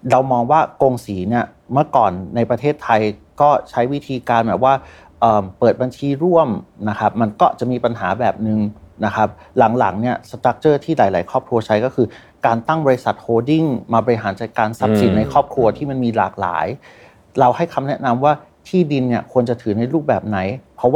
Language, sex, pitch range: Thai, male, 105-130 Hz